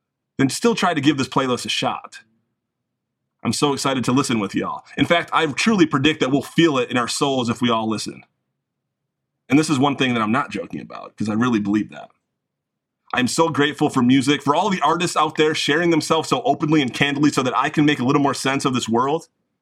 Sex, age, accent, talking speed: male, 30-49, American, 230 wpm